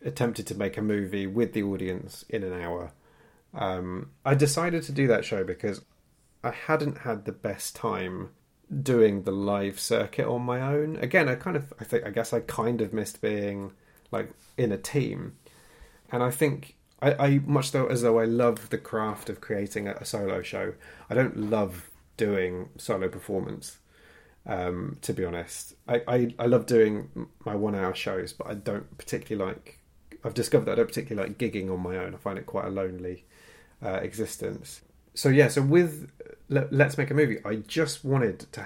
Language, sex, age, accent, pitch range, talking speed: English, male, 30-49, British, 100-125 Hz, 190 wpm